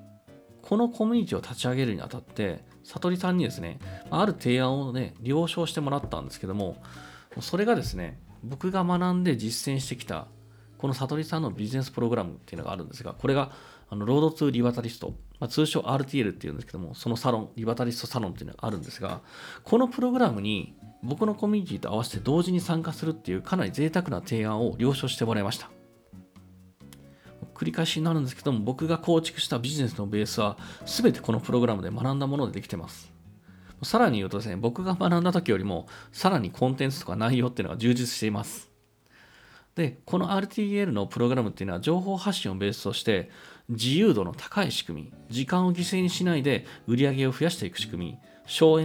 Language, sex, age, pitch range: Japanese, male, 40-59, 105-165 Hz